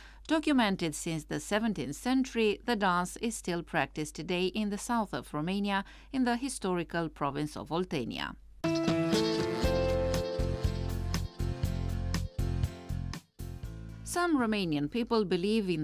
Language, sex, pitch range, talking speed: English, female, 150-220 Hz, 100 wpm